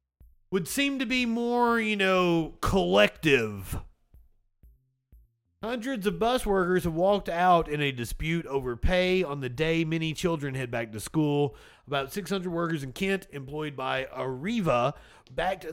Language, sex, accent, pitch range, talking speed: English, male, American, 125-175 Hz, 145 wpm